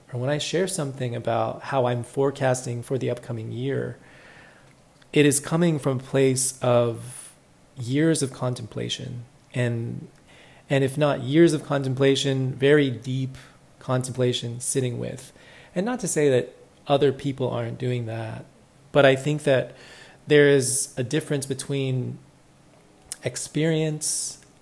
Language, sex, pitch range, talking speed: English, male, 120-145 Hz, 135 wpm